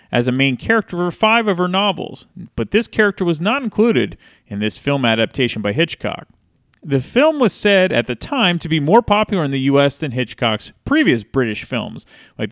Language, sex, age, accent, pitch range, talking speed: English, male, 30-49, American, 125-205 Hz, 195 wpm